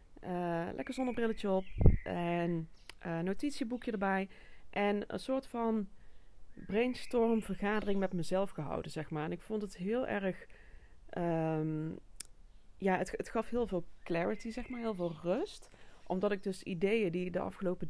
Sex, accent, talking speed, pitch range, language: female, Dutch, 150 wpm, 170-210 Hz, Dutch